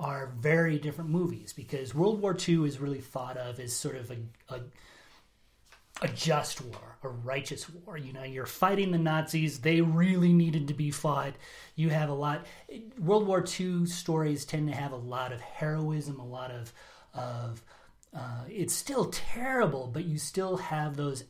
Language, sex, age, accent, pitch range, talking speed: English, male, 30-49, American, 130-165 Hz, 180 wpm